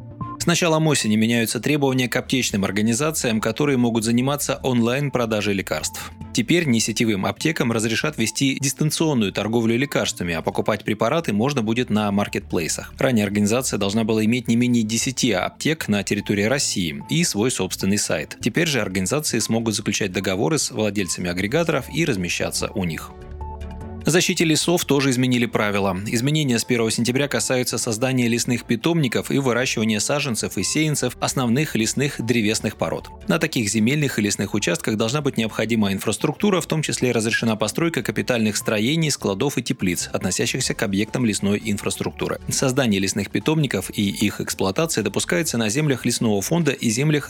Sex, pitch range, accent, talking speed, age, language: male, 105-135 Hz, native, 150 wpm, 20-39, Russian